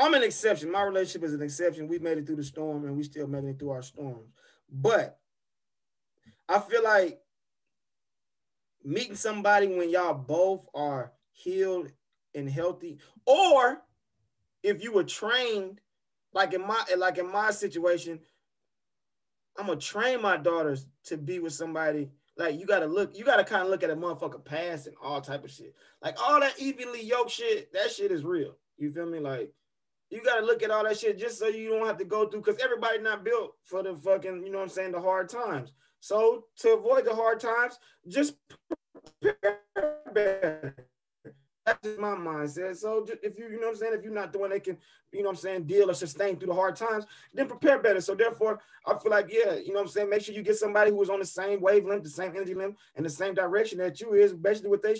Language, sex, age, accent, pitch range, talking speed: English, male, 20-39, American, 170-225 Hz, 220 wpm